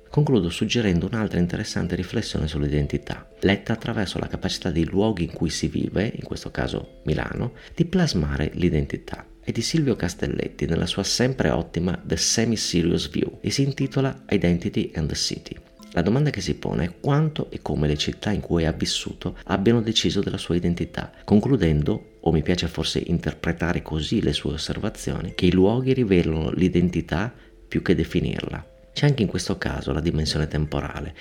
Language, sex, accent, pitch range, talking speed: Italian, male, native, 80-110 Hz, 170 wpm